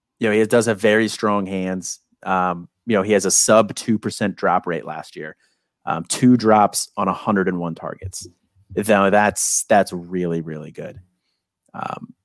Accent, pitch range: American, 85-110 Hz